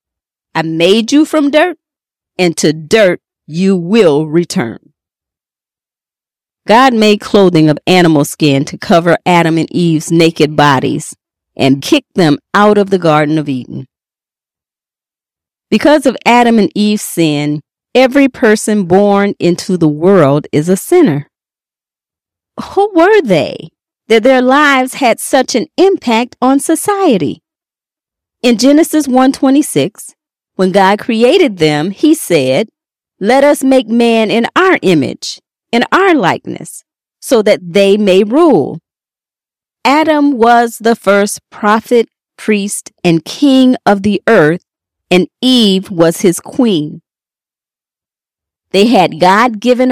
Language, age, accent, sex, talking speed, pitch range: English, 40-59, American, female, 125 wpm, 170-260 Hz